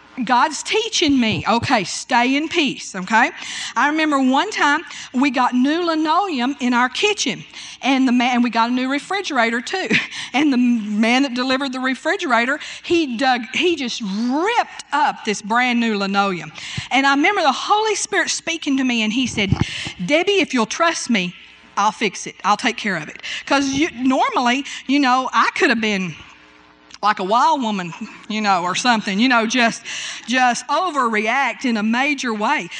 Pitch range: 230-300 Hz